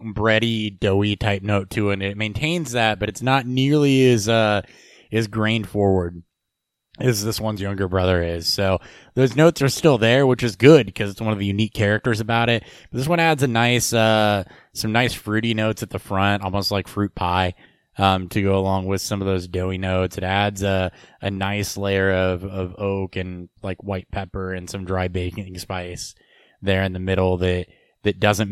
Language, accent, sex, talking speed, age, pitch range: English, American, male, 200 wpm, 20-39, 95-105 Hz